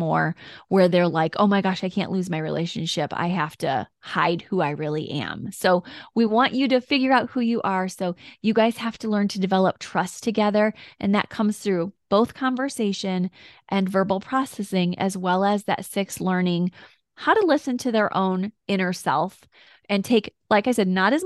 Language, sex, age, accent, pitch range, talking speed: English, female, 20-39, American, 180-210 Hz, 200 wpm